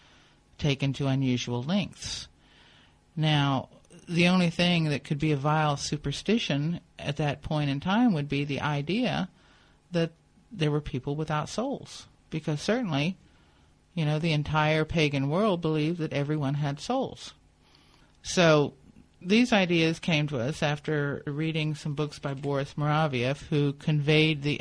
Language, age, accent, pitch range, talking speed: English, 50-69, American, 140-165 Hz, 140 wpm